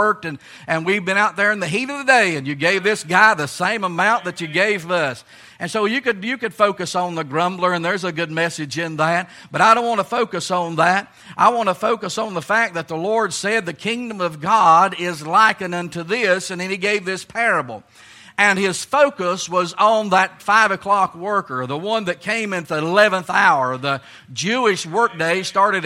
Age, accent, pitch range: 50-69, American, 170-220 Hz